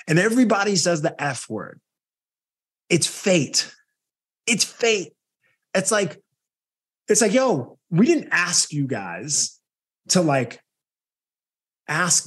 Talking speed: 115 wpm